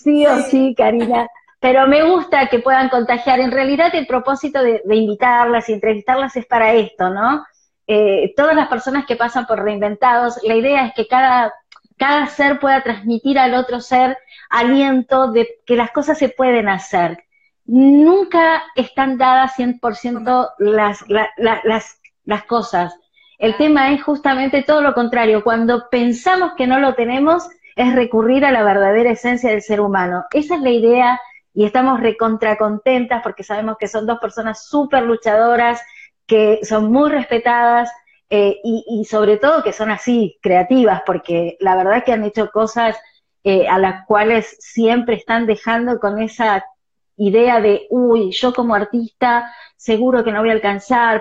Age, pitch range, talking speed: 30-49, 220-265 Hz, 160 wpm